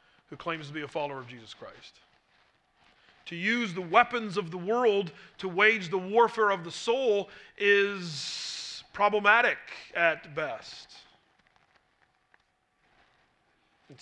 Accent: American